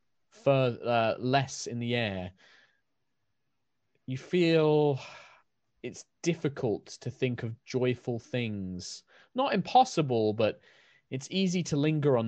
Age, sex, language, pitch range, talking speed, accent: 20-39, male, English, 95-130 Hz, 110 wpm, British